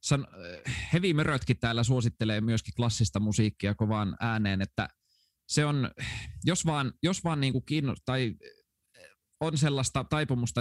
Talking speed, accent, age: 125 wpm, native, 20-39